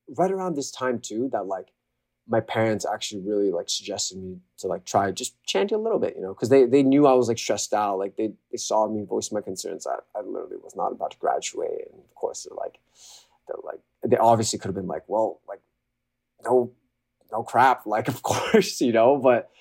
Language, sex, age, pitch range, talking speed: English, male, 20-39, 100-125 Hz, 225 wpm